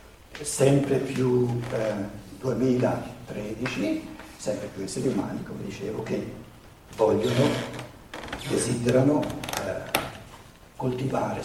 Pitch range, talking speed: 105-130 Hz, 80 wpm